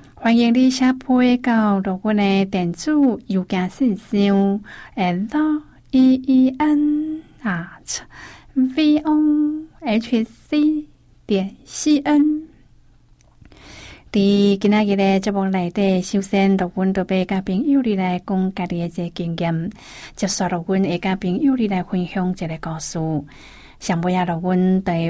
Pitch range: 180-225 Hz